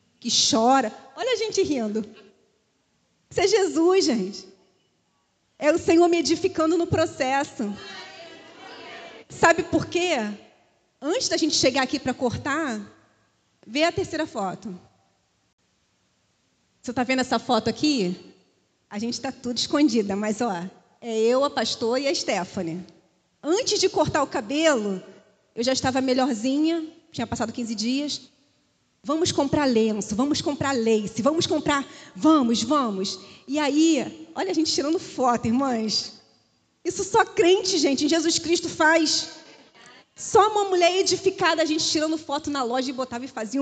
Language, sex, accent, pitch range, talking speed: Portuguese, female, Brazilian, 230-315 Hz, 145 wpm